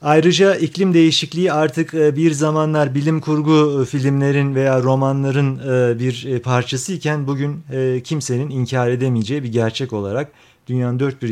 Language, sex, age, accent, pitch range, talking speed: Turkish, male, 40-59, native, 115-150 Hz, 120 wpm